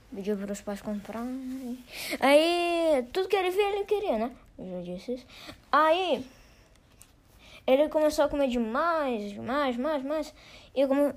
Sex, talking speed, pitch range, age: female, 155 wpm, 215-295 Hz, 20-39